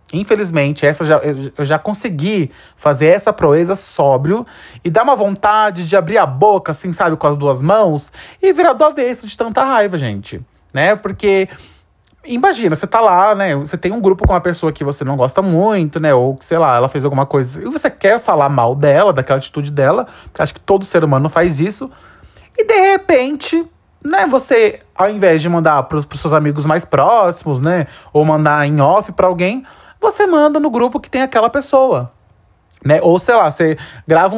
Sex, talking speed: male, 195 wpm